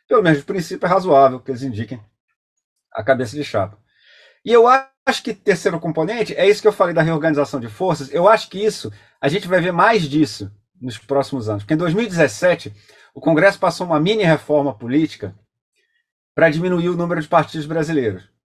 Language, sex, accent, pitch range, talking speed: Portuguese, male, Brazilian, 135-185 Hz, 185 wpm